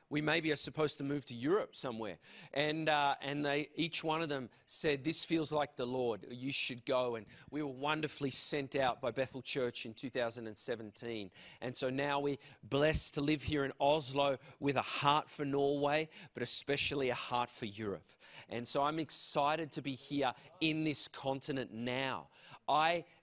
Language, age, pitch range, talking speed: English, 40-59, 135-160 Hz, 185 wpm